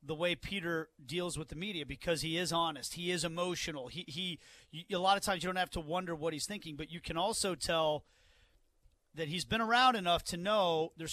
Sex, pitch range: male, 160-200 Hz